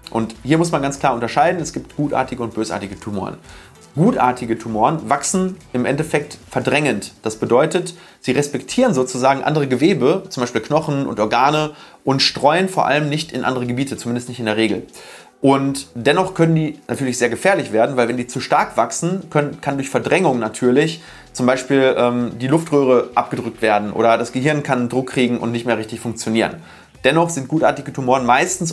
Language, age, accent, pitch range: German, 30-49, German, 115-150 Hz